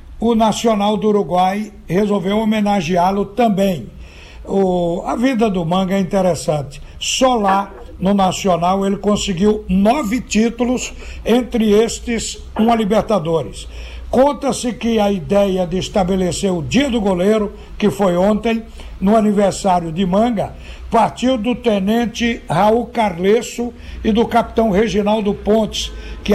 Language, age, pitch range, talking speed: Portuguese, 60-79, 195-230 Hz, 120 wpm